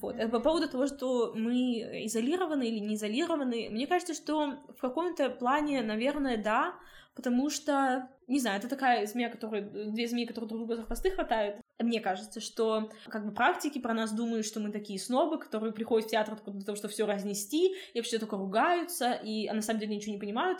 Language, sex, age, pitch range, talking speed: Russian, female, 20-39, 220-270 Hz, 200 wpm